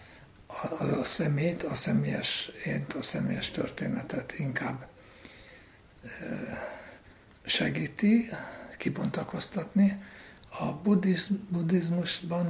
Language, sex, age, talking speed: Hungarian, male, 60-79, 60 wpm